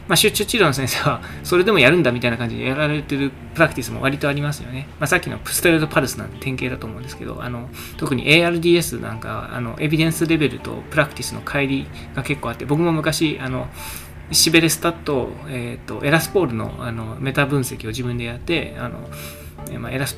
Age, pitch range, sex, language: 20-39, 115-150 Hz, male, Japanese